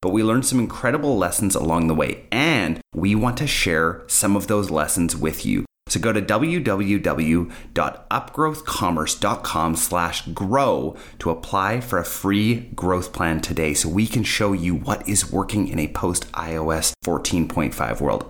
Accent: American